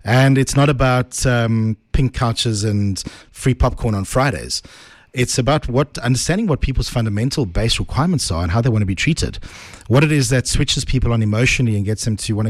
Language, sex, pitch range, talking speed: English, male, 100-135 Hz, 200 wpm